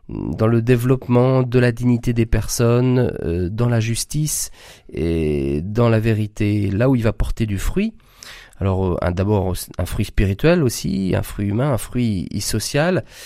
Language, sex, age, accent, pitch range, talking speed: French, male, 40-59, French, 100-130 Hz, 165 wpm